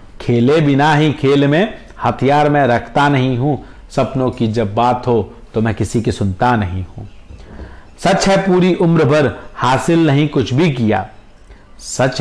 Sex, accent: male, native